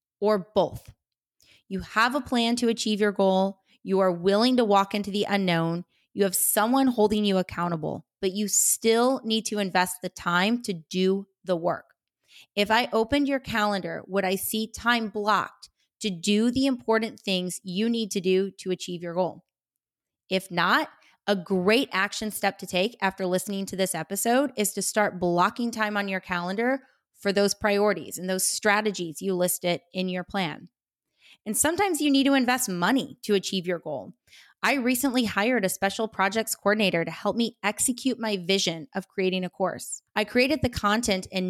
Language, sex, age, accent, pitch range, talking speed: English, female, 30-49, American, 185-225 Hz, 180 wpm